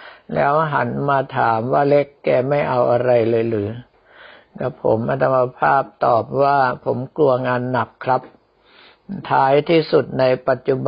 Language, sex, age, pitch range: Thai, male, 60-79, 125-150 Hz